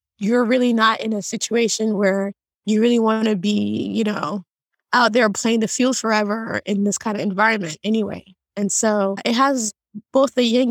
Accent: American